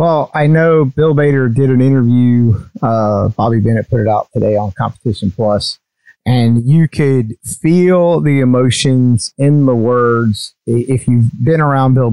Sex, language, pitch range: male, English, 110-130 Hz